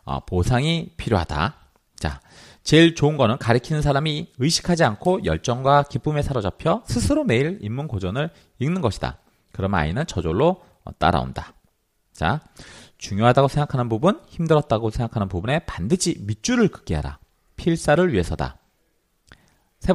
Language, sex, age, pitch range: Korean, male, 40-59, 105-170 Hz